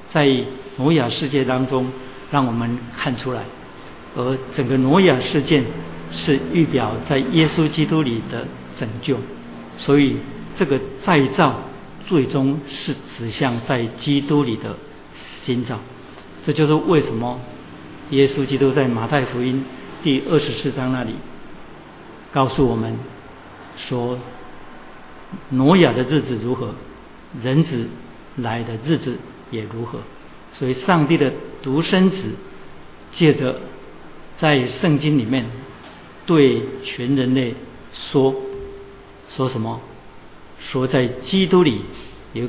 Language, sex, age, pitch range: Chinese, male, 50-69, 120-145 Hz